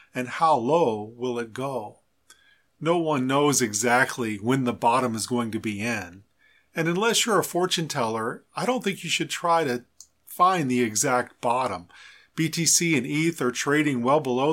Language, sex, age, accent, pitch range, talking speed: English, male, 40-59, American, 125-165 Hz, 175 wpm